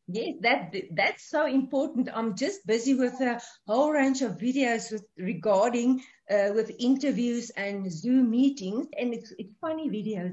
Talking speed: 155 wpm